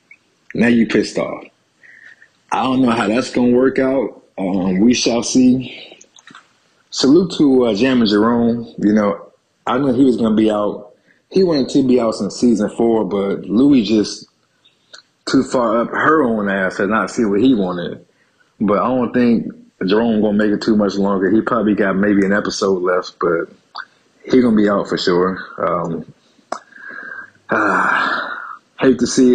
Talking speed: 170 wpm